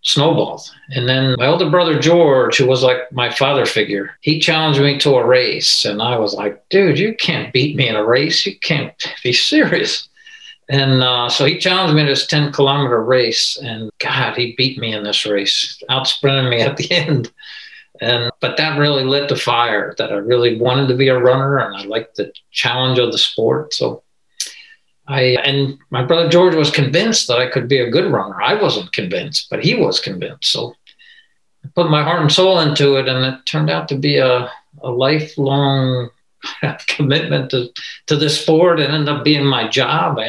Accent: American